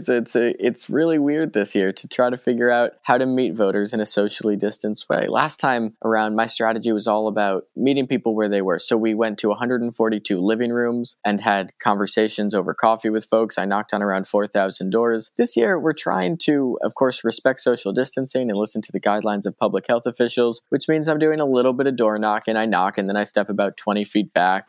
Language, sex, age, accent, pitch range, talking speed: English, male, 20-39, American, 100-125 Hz, 225 wpm